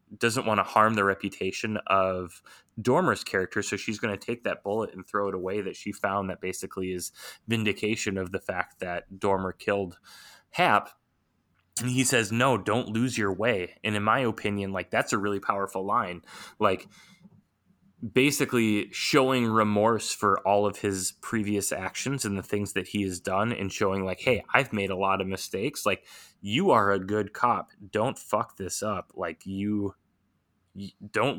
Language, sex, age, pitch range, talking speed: English, male, 20-39, 95-115 Hz, 180 wpm